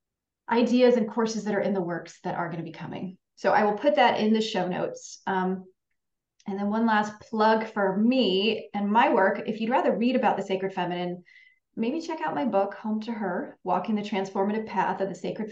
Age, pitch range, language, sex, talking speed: 30-49, 190-245 Hz, English, female, 220 wpm